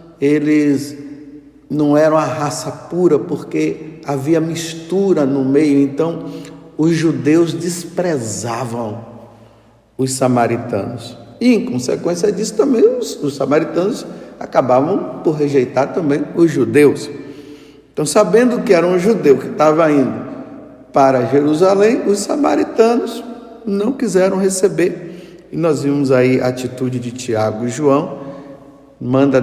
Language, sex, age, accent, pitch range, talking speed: Portuguese, male, 50-69, Brazilian, 120-175 Hz, 120 wpm